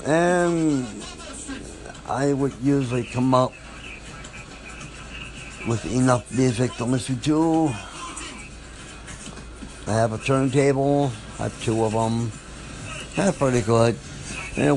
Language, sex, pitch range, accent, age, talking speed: English, male, 115-140 Hz, American, 60-79, 100 wpm